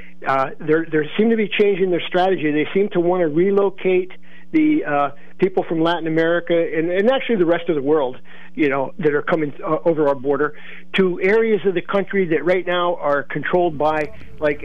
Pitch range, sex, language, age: 155-195 Hz, male, English, 50-69